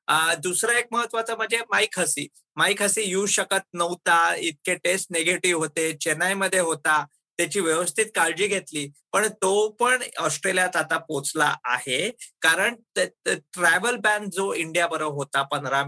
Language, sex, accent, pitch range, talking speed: Marathi, male, native, 165-215 Hz, 140 wpm